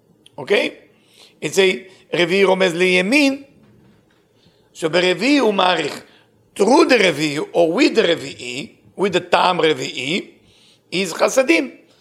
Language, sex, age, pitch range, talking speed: English, male, 50-69, 170-230 Hz, 105 wpm